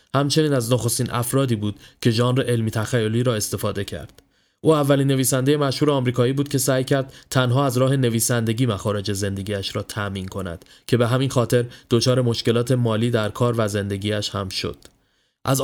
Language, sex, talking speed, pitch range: Persian, male, 170 wpm, 115-140 Hz